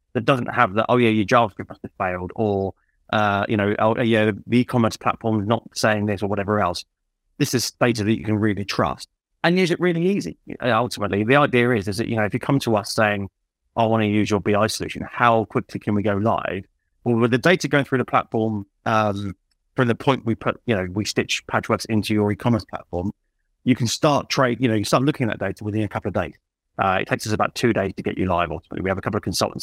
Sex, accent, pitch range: male, British, 100-120 Hz